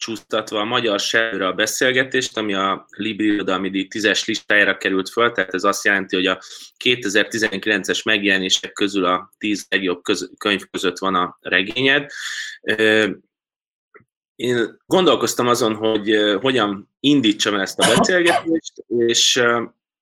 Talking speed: 125 wpm